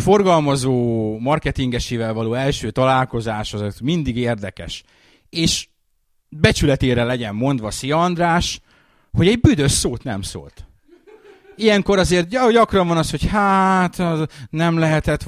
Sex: male